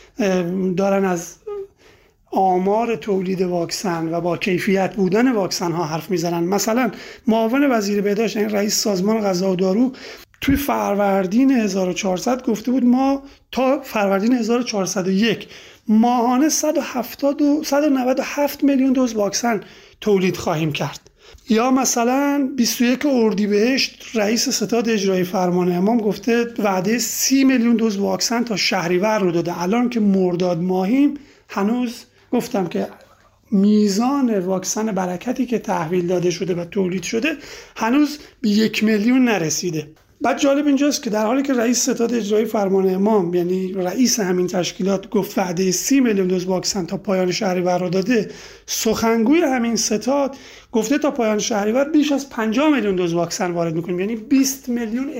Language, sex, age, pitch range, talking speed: Persian, male, 30-49, 190-250 Hz, 140 wpm